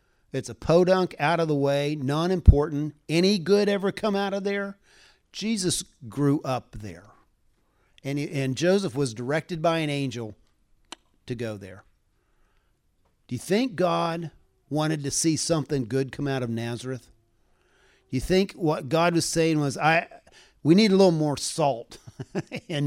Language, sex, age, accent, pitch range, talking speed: English, male, 50-69, American, 120-155 Hz, 155 wpm